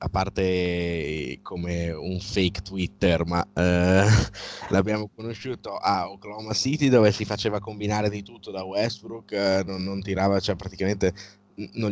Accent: native